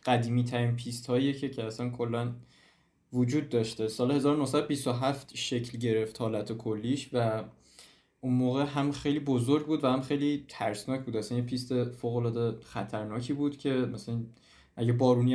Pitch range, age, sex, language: 120-145 Hz, 20-39, male, Persian